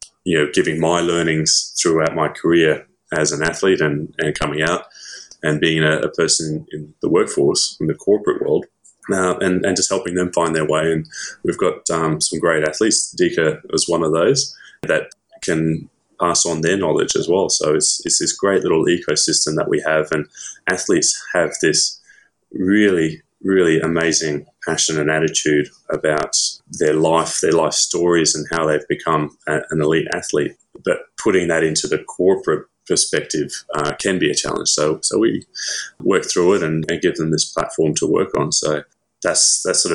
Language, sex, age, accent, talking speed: English, male, 20-39, Australian, 180 wpm